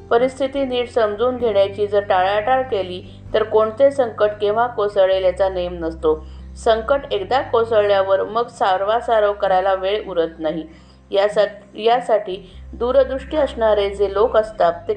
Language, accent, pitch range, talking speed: Marathi, native, 185-235 Hz, 125 wpm